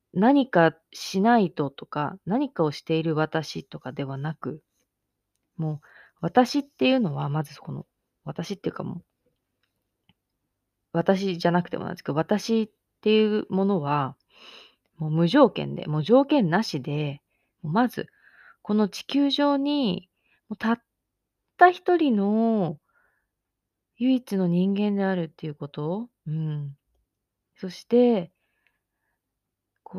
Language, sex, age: Japanese, female, 20-39